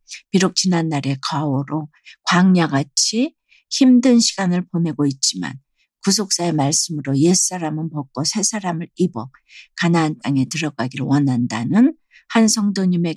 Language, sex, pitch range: Korean, female, 145-185 Hz